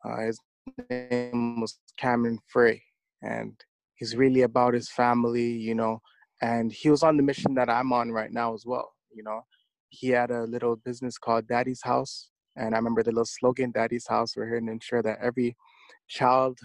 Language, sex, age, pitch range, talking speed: English, male, 20-39, 120-150 Hz, 185 wpm